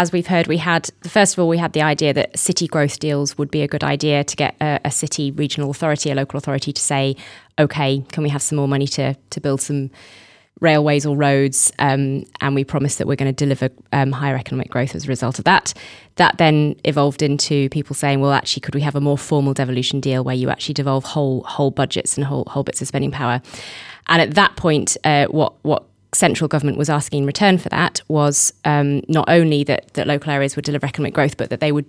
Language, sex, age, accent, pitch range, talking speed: English, female, 20-39, British, 135-150 Hz, 240 wpm